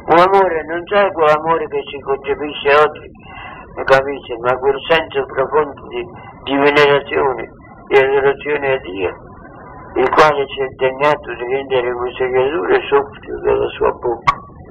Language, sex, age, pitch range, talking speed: Italian, male, 60-79, 135-165 Hz, 145 wpm